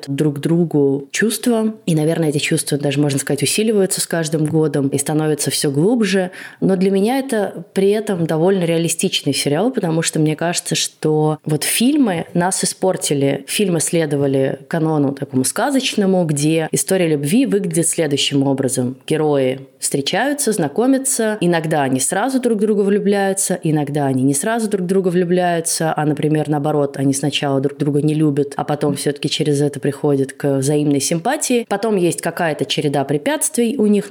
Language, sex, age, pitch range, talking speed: Russian, female, 20-39, 145-195 Hz, 155 wpm